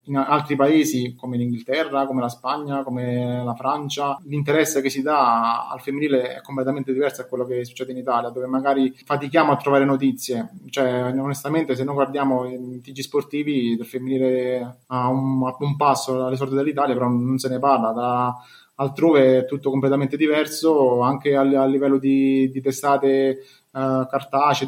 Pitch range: 130-145 Hz